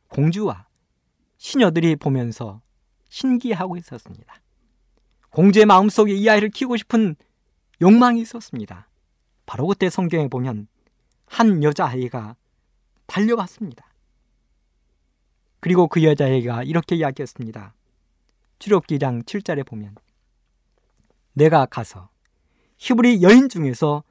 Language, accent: Korean, native